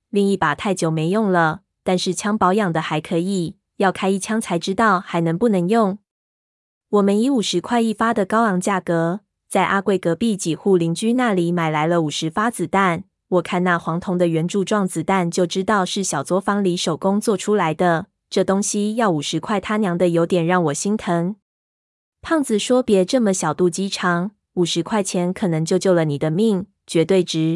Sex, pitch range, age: female, 170-205 Hz, 20-39